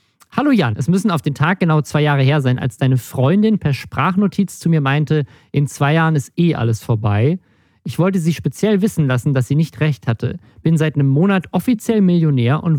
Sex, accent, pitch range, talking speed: male, German, 130-170 Hz, 210 wpm